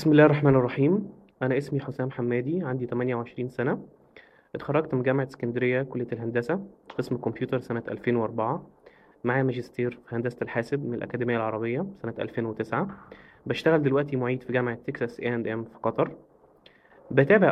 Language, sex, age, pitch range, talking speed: Arabic, male, 20-39, 120-145 Hz, 145 wpm